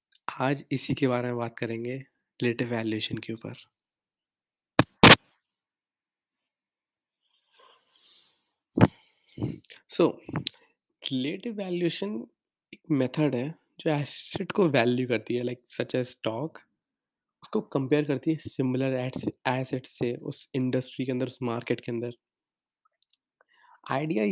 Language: Hindi